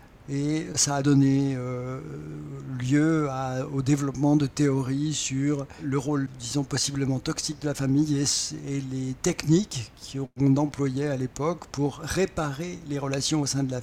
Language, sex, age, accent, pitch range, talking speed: French, male, 60-79, French, 135-160 Hz, 145 wpm